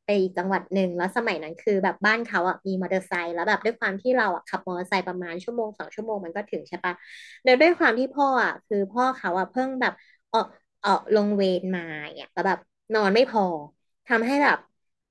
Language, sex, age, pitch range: Thai, female, 20-39, 185-240 Hz